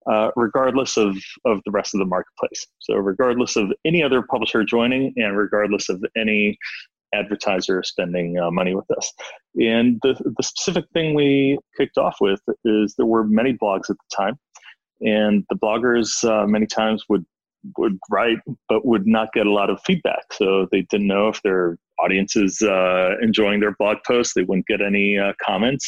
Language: English